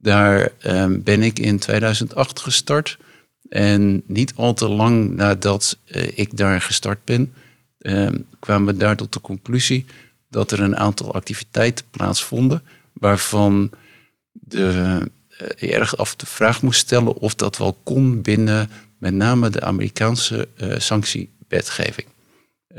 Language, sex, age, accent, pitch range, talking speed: Dutch, male, 50-69, Dutch, 95-115 Hz, 130 wpm